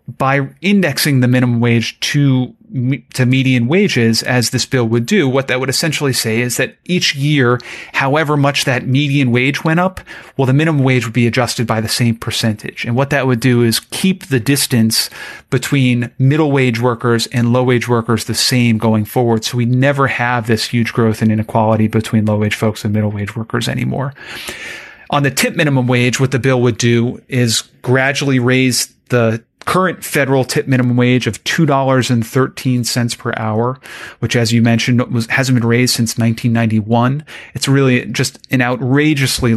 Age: 30-49